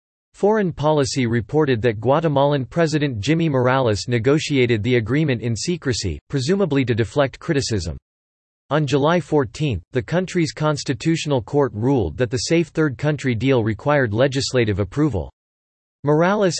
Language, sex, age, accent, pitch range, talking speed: English, male, 40-59, American, 115-155 Hz, 125 wpm